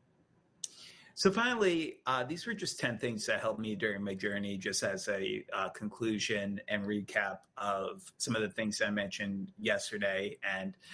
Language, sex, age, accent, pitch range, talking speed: English, male, 30-49, American, 105-130 Hz, 165 wpm